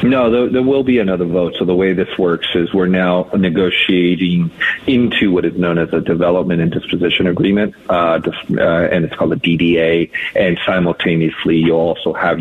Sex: male